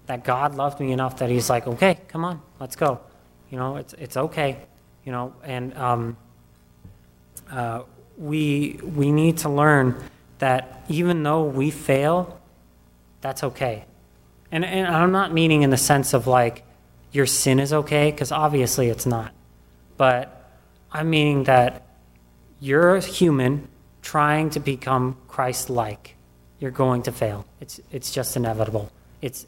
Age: 30-49